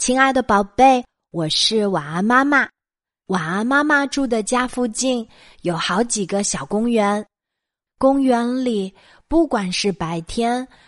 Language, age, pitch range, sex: Chinese, 20-39, 190-270 Hz, female